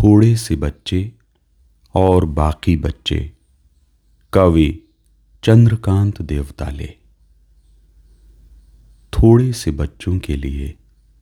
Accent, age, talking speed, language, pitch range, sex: native, 40-59, 75 wpm, Hindi, 70-90 Hz, male